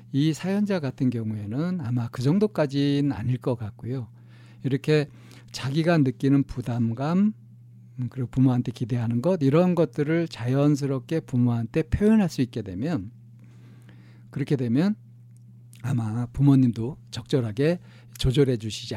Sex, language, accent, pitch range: male, Korean, native, 120-145 Hz